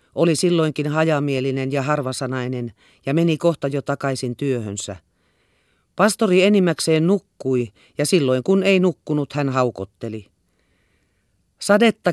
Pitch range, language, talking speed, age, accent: 130-175 Hz, Finnish, 110 wpm, 40-59, native